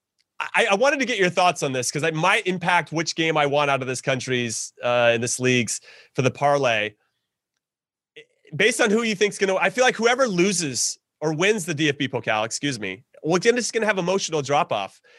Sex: male